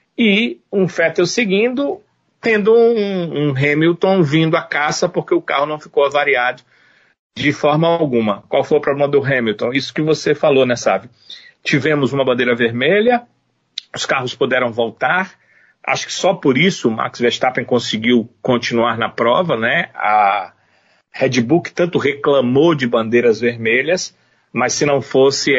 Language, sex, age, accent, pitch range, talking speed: Portuguese, male, 40-59, Brazilian, 125-160 Hz, 155 wpm